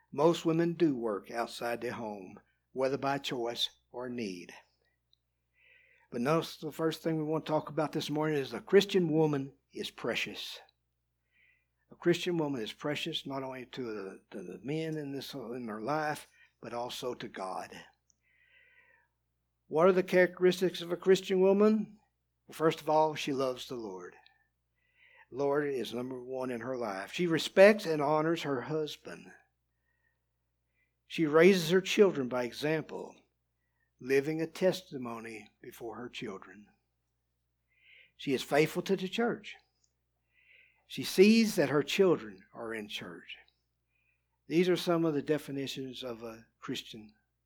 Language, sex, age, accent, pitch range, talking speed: English, male, 60-79, American, 95-165 Hz, 145 wpm